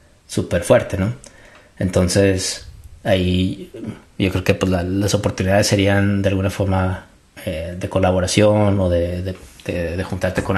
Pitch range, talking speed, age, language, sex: 90-100 Hz, 145 wpm, 30-49, Spanish, male